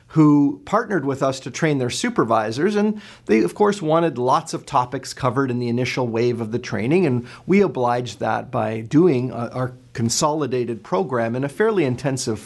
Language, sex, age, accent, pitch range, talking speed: English, male, 40-59, American, 120-150 Hz, 180 wpm